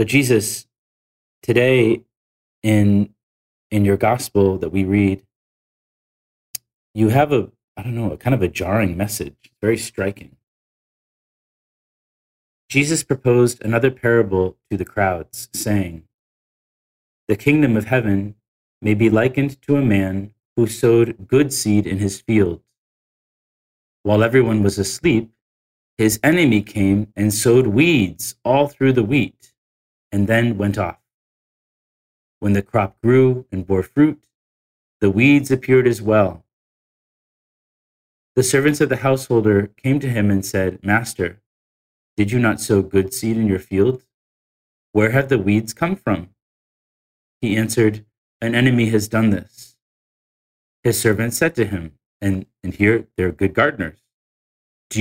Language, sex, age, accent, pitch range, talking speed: English, male, 40-59, American, 95-120 Hz, 135 wpm